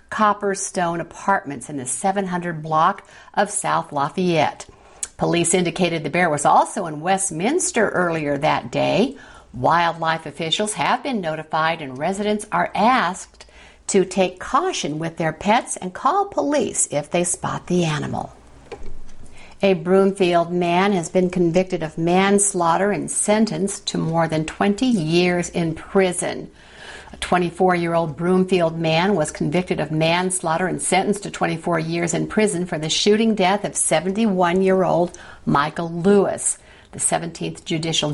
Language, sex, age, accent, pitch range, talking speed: English, female, 50-69, American, 160-195 Hz, 135 wpm